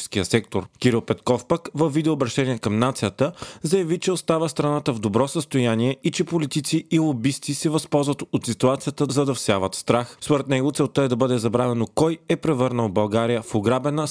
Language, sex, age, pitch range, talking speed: Bulgarian, male, 30-49, 115-145 Hz, 175 wpm